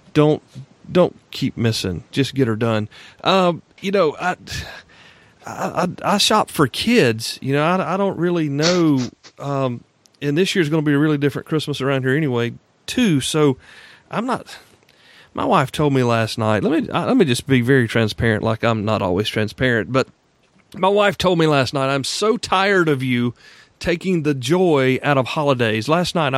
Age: 40-59